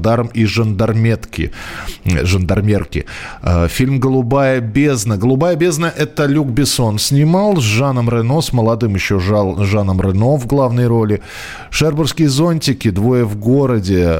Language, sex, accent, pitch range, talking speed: Russian, male, native, 95-130 Hz, 125 wpm